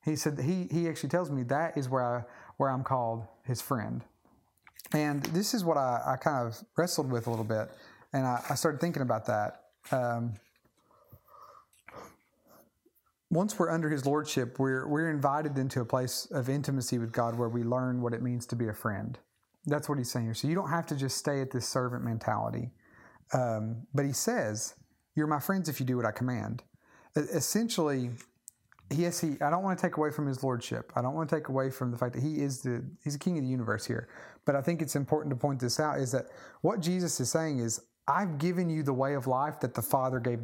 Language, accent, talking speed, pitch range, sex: English, American, 225 wpm, 120-155 Hz, male